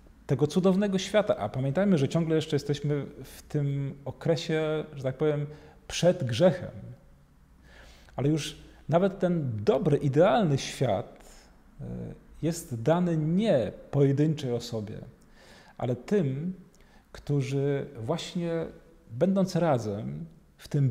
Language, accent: Polish, native